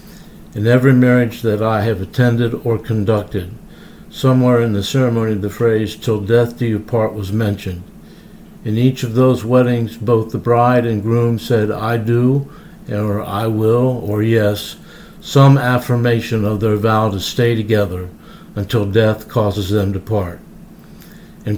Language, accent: English, American